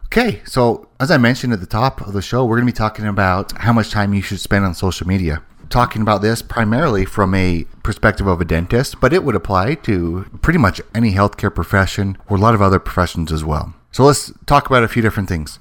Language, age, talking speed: English, 30-49, 240 wpm